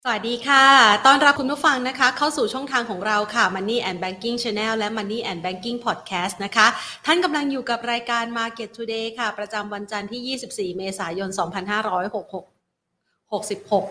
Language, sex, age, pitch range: Thai, female, 30-49, 200-250 Hz